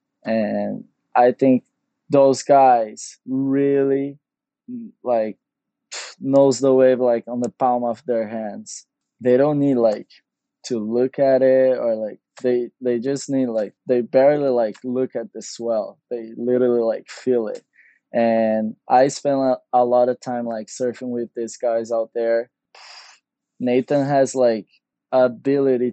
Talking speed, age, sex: 145 wpm, 20-39, male